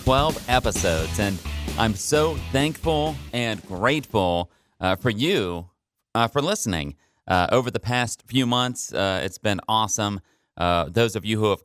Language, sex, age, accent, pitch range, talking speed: English, male, 30-49, American, 100-130 Hz, 155 wpm